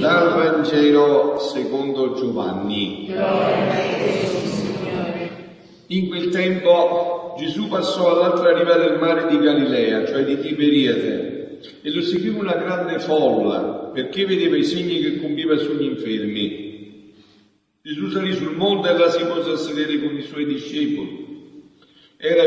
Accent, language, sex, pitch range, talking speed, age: native, Italian, male, 130-185 Hz, 125 wpm, 50-69